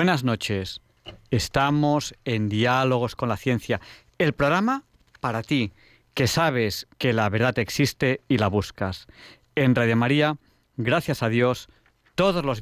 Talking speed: 140 wpm